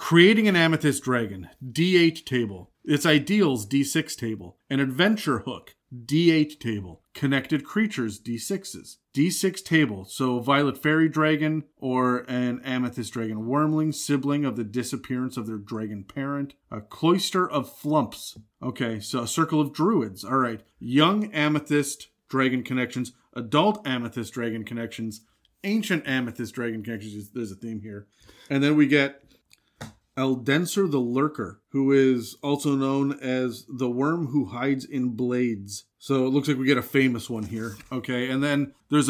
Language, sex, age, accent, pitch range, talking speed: English, male, 40-59, American, 120-145 Hz, 150 wpm